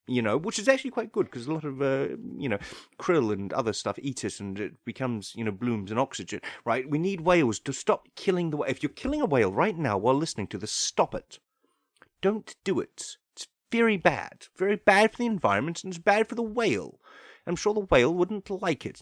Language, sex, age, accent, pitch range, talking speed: English, male, 30-49, British, 155-225 Hz, 235 wpm